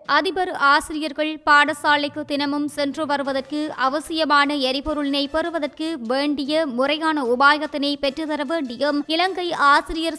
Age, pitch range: 20-39, 275-315 Hz